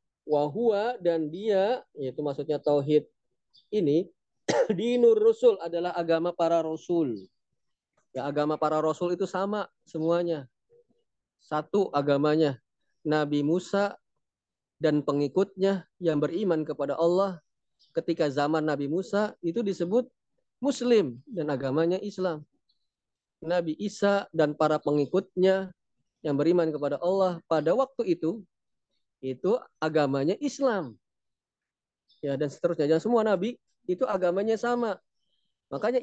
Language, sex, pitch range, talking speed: Indonesian, male, 150-195 Hz, 110 wpm